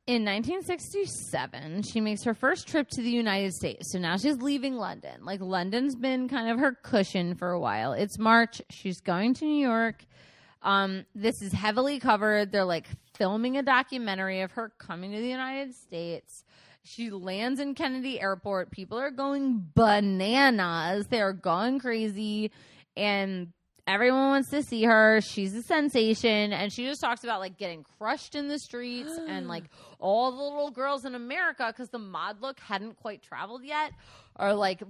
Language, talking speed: English, 175 wpm